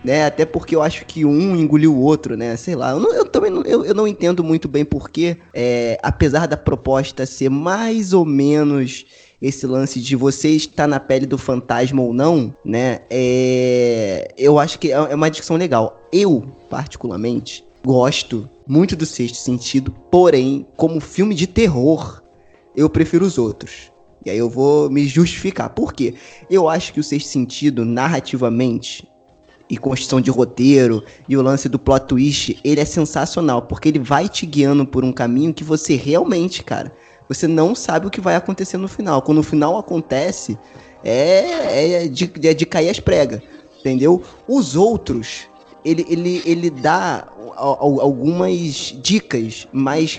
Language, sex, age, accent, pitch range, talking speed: Portuguese, male, 20-39, Brazilian, 130-165 Hz, 165 wpm